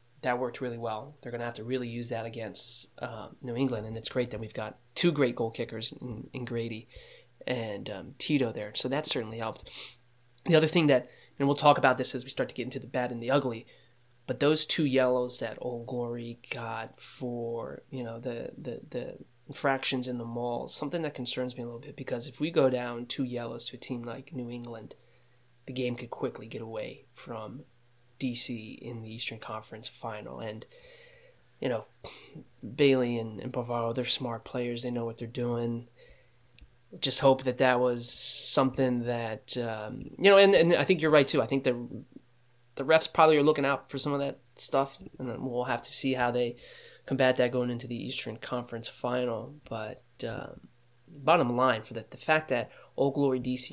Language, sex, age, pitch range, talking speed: English, male, 30-49, 120-135 Hz, 200 wpm